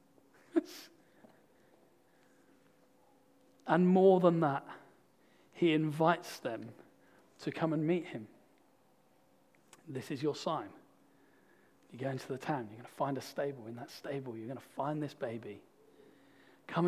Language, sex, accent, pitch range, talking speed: English, male, British, 150-240 Hz, 130 wpm